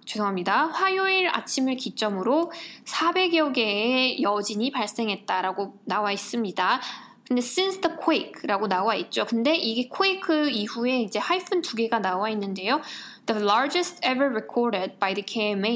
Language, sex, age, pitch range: English, female, 20-39, 210-280 Hz